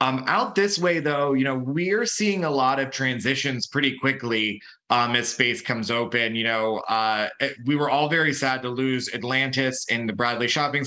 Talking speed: 200 wpm